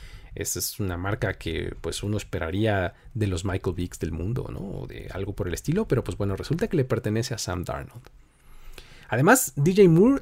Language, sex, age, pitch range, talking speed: Spanish, male, 40-59, 100-145 Hz, 200 wpm